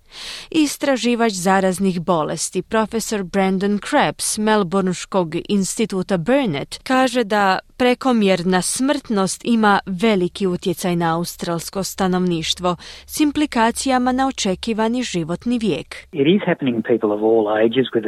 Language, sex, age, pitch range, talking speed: Croatian, female, 30-49, 180-245 Hz, 110 wpm